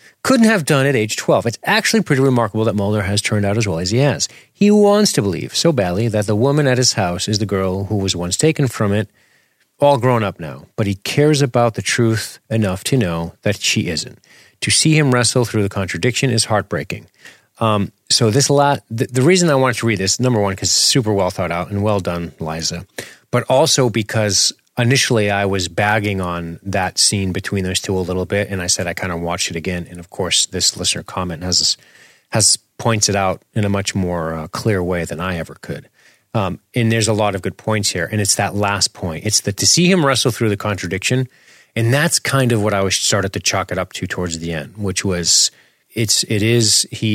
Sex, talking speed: male, 230 wpm